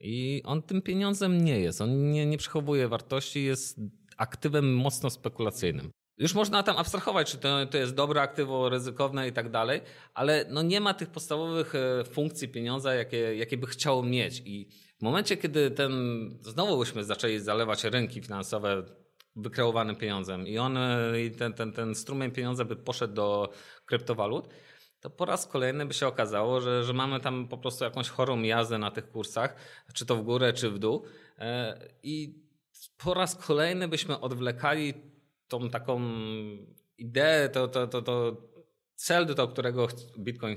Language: Polish